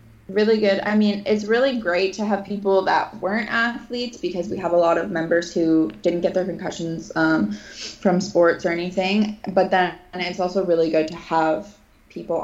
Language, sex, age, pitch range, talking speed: English, female, 20-39, 160-190 Hz, 195 wpm